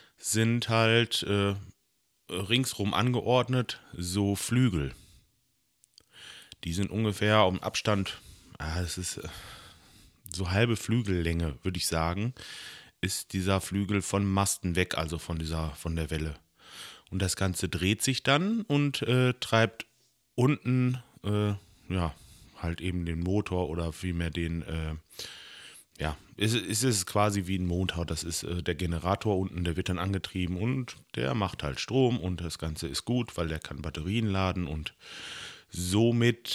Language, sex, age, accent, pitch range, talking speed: German, male, 30-49, German, 85-115 Hz, 145 wpm